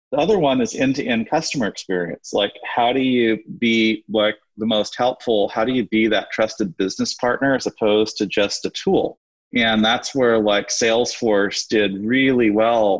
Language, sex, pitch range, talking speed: English, male, 100-120 Hz, 170 wpm